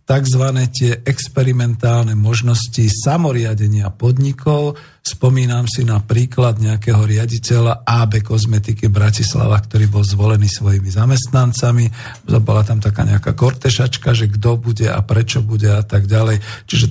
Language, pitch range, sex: Slovak, 110-130 Hz, male